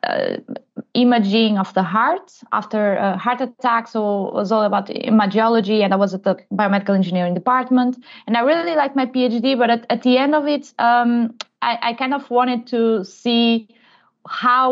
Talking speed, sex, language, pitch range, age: 185 wpm, female, English, 210-260 Hz, 20-39